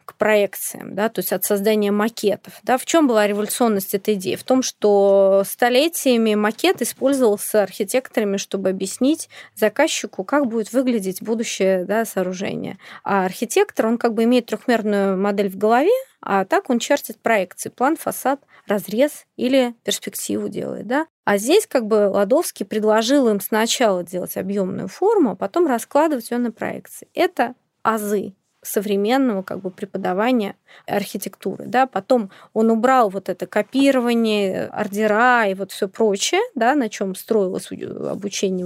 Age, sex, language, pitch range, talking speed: 20-39, female, Russian, 200-255 Hz, 145 wpm